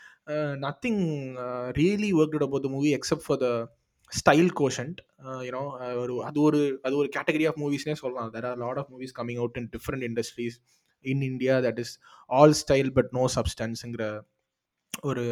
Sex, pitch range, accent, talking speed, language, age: male, 120-150 Hz, native, 190 wpm, Tamil, 20-39